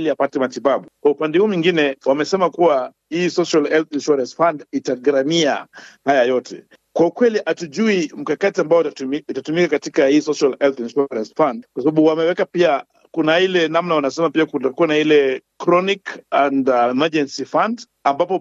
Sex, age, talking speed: male, 50-69, 150 wpm